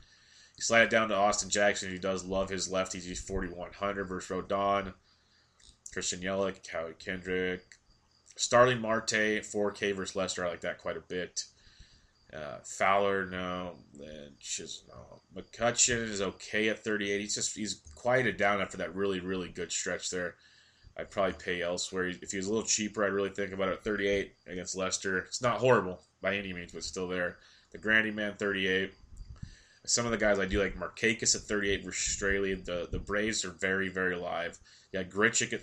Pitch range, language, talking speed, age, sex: 90-105 Hz, English, 180 wpm, 20-39, male